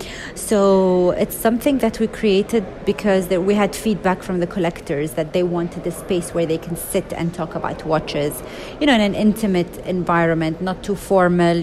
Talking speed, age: 185 wpm, 30-49